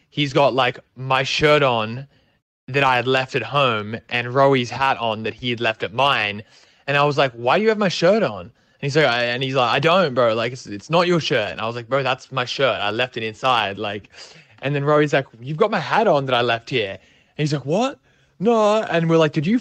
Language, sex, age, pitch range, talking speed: English, male, 20-39, 120-175 Hz, 260 wpm